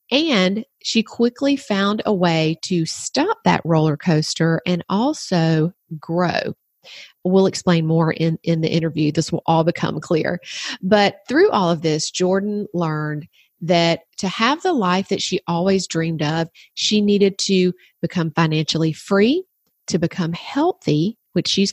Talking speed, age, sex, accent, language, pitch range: 150 wpm, 40-59, female, American, English, 170-240 Hz